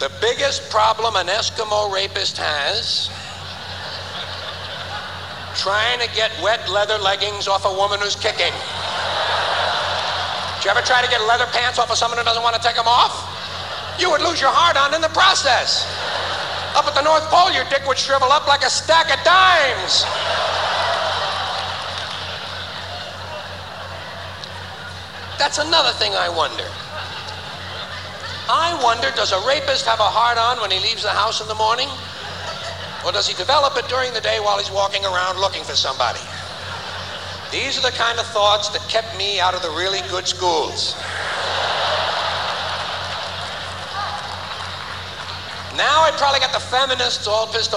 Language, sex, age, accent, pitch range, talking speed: English, male, 60-79, American, 200-265 Hz, 150 wpm